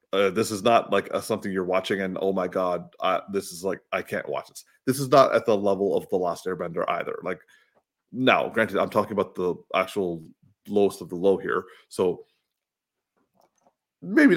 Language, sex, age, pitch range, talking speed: English, male, 30-49, 95-135 Hz, 195 wpm